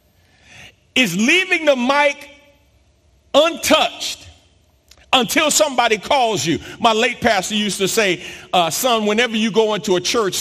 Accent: American